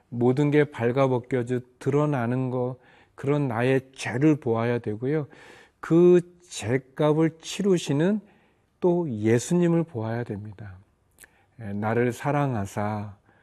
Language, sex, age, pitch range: Korean, male, 40-59, 115-150 Hz